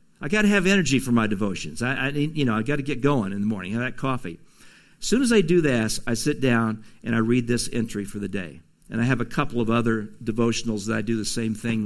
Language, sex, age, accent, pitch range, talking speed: English, male, 50-69, American, 110-140 Hz, 275 wpm